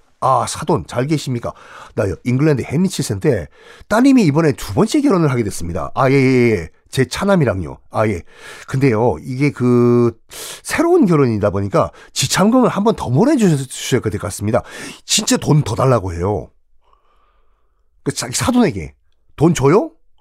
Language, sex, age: Korean, male, 40-59